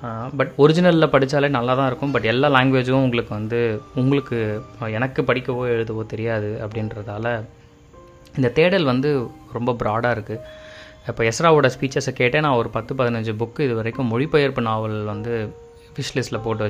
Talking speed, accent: 140 wpm, native